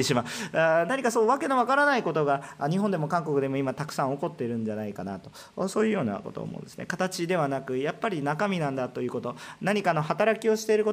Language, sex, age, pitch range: Japanese, male, 40-59, 145-215 Hz